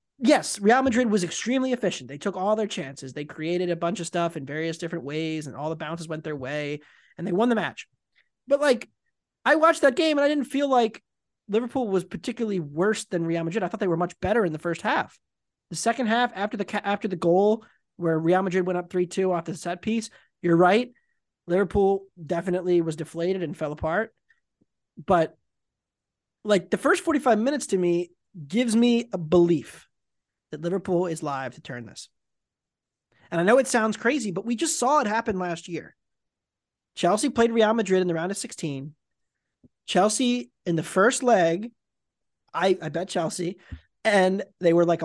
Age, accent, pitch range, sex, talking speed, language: 20-39, American, 160-215 Hz, male, 190 wpm, English